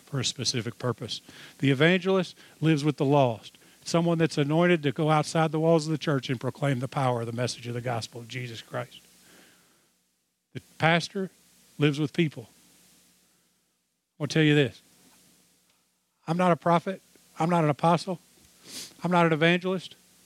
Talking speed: 165 wpm